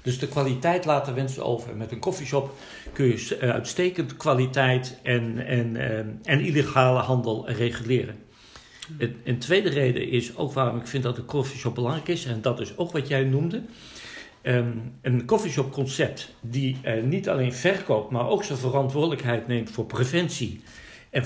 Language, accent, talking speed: Dutch, Dutch, 150 wpm